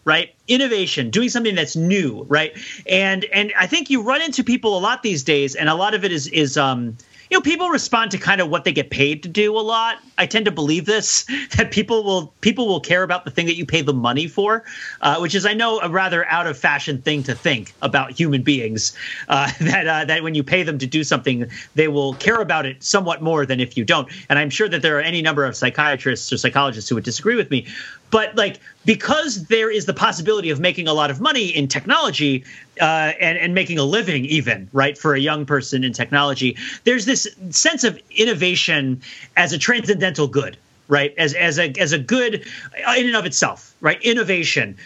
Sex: male